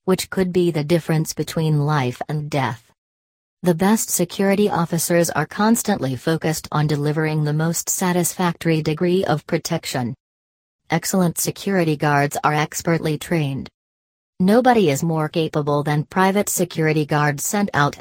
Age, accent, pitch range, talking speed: 40-59, American, 145-175 Hz, 135 wpm